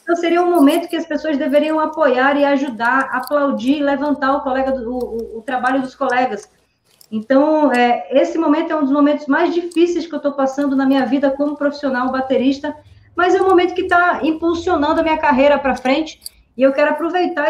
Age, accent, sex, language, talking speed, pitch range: 20-39, Brazilian, female, Portuguese, 185 wpm, 260-300 Hz